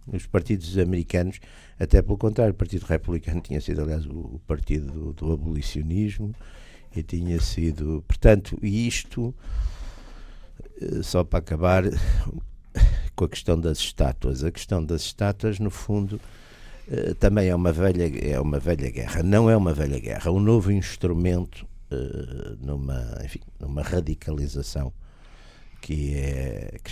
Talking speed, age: 125 wpm, 60-79